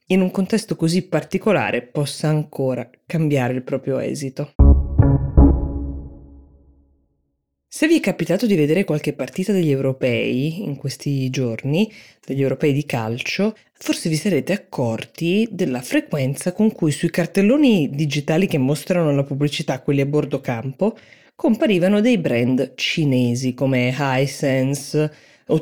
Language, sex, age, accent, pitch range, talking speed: Italian, female, 20-39, native, 135-165 Hz, 125 wpm